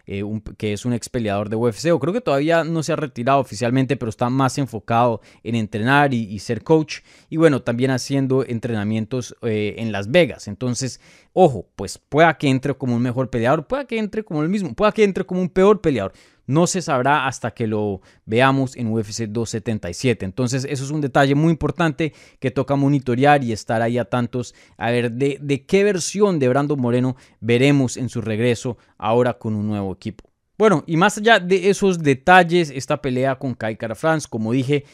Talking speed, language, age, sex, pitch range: 195 wpm, Spanish, 20-39, male, 115-150 Hz